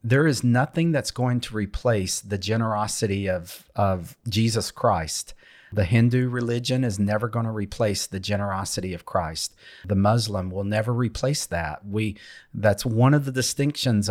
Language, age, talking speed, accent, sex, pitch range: English, 40-59, 155 wpm, American, male, 100-120 Hz